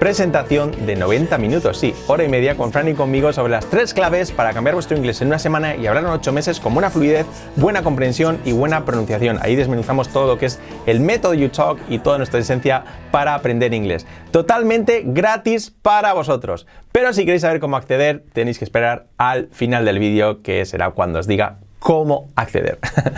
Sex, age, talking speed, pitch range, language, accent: male, 30-49, 195 wpm, 120-170 Hz, Spanish, Spanish